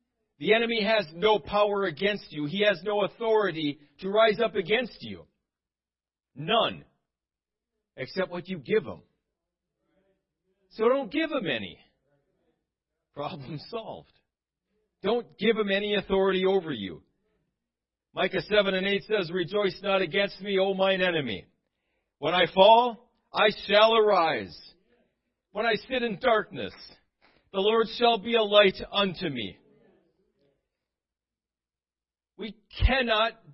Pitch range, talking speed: 190-235 Hz, 125 wpm